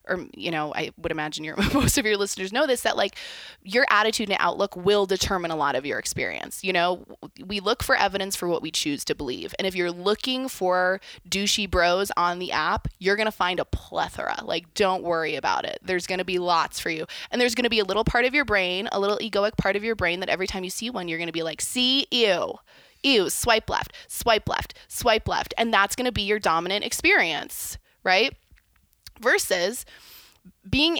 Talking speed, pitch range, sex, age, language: 225 wpm, 180-225 Hz, female, 20-39, English